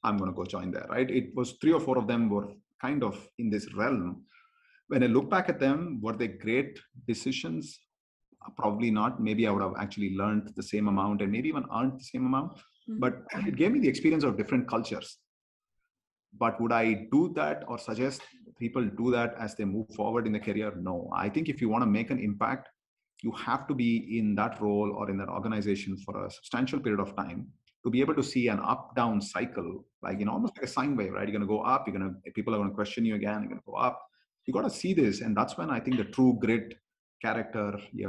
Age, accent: 30-49, Indian